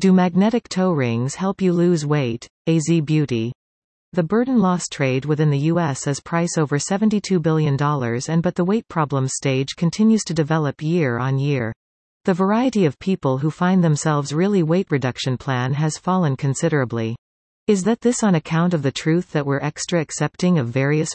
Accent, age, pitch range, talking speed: American, 40-59, 140-180 Hz, 175 wpm